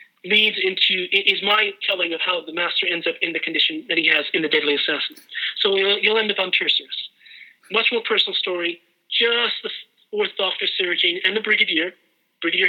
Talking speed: 195 wpm